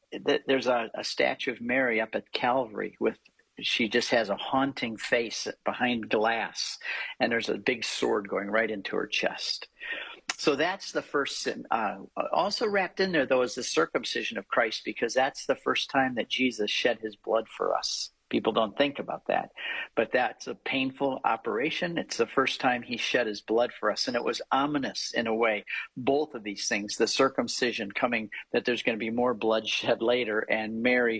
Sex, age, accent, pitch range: male, 50-69, American, 115-170 Hz